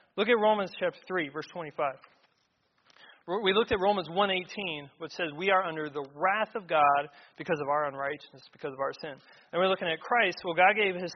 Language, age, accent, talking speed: English, 30-49, American, 205 wpm